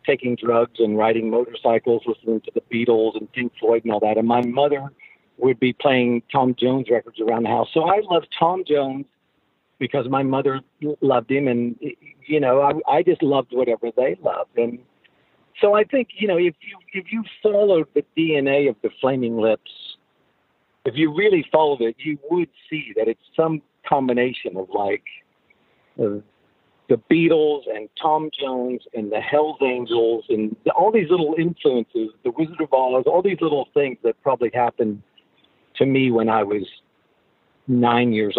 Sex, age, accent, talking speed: male, 50-69, American, 175 wpm